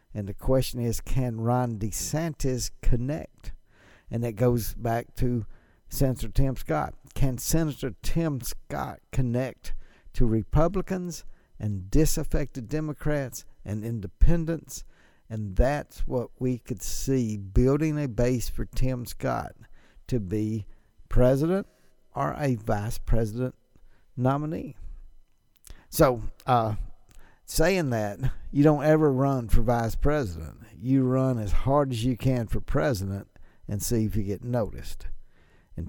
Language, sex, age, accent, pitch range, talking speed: English, male, 60-79, American, 105-130 Hz, 125 wpm